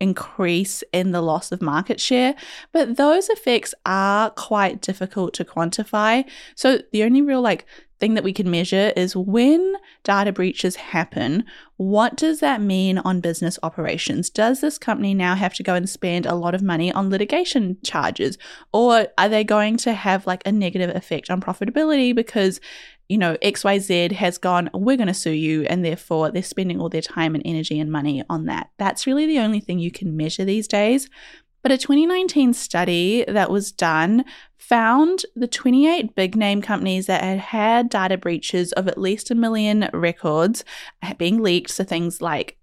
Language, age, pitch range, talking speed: English, 10-29, 180-250 Hz, 180 wpm